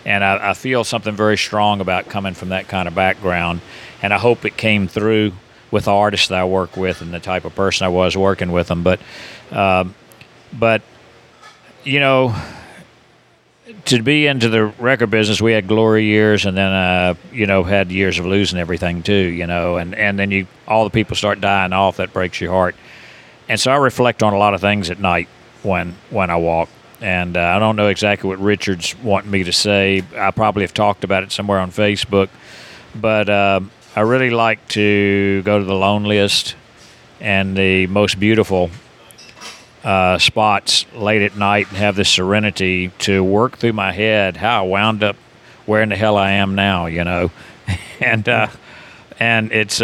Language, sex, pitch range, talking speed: English, male, 95-110 Hz, 195 wpm